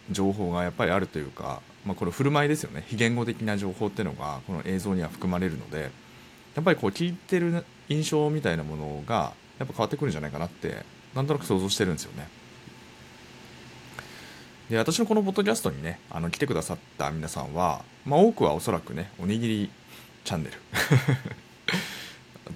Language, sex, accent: Japanese, male, native